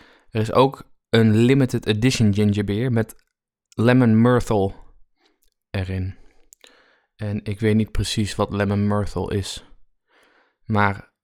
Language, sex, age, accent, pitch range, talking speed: Dutch, male, 20-39, Dutch, 100-120 Hz, 110 wpm